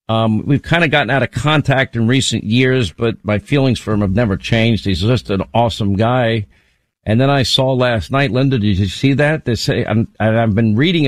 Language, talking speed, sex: English, 220 wpm, male